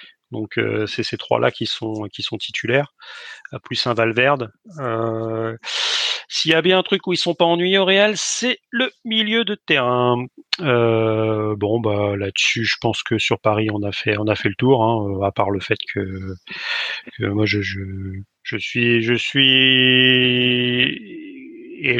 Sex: male